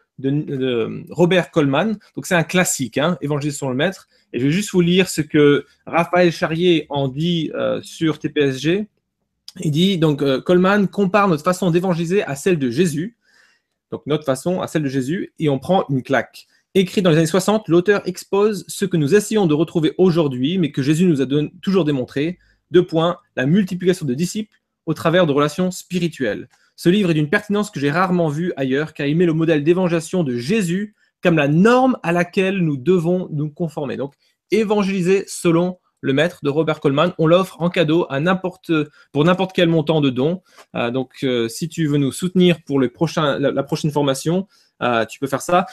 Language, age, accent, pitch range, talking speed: French, 20-39, French, 145-185 Hz, 200 wpm